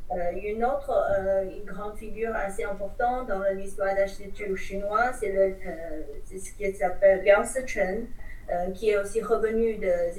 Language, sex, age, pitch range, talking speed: French, female, 40-59, 195-235 Hz, 170 wpm